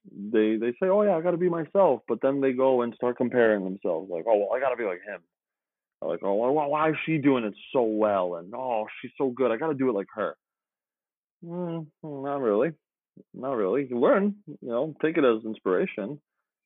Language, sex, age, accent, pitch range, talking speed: English, male, 20-39, American, 105-140 Hz, 225 wpm